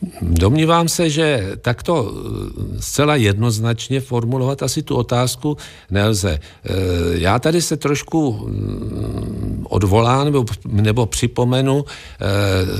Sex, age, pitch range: male, 50-69, 95-125 Hz